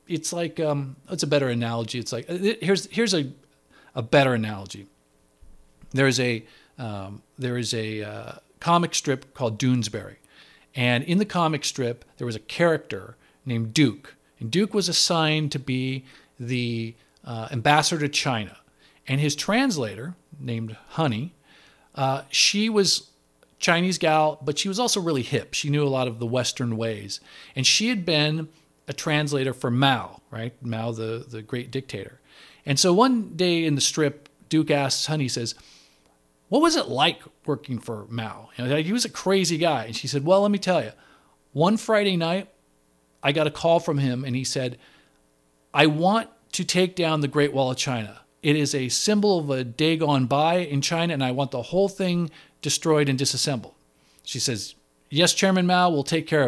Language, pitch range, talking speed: English, 115-165 Hz, 180 wpm